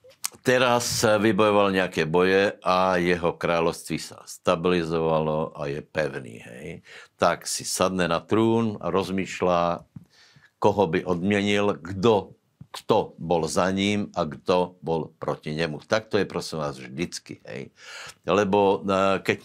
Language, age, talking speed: Slovak, 60-79, 130 wpm